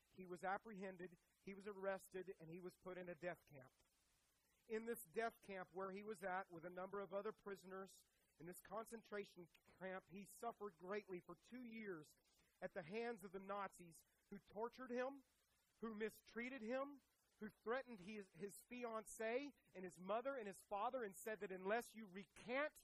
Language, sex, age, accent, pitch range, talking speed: English, male, 40-59, American, 175-220 Hz, 175 wpm